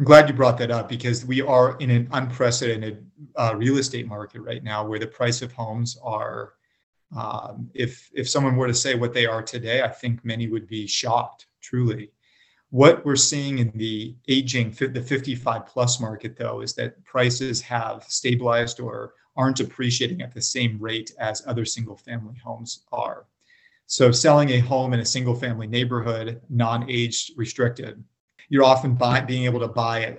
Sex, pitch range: male, 115-130 Hz